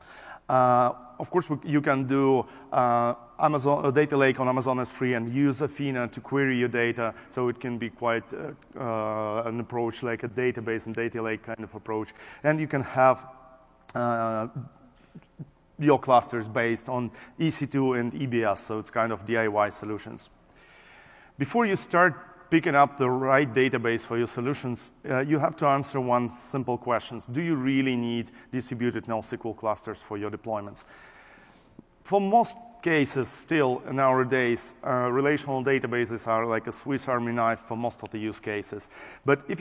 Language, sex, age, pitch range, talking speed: English, male, 30-49, 115-135 Hz, 165 wpm